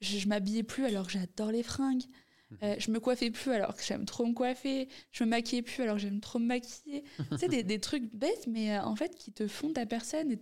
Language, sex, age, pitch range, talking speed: French, female, 20-39, 210-260 Hz, 270 wpm